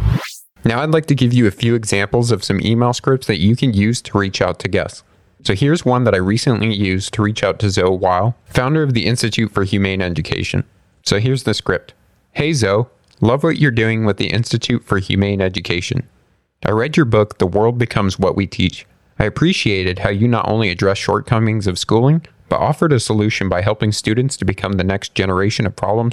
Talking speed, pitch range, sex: 210 wpm, 95-125 Hz, male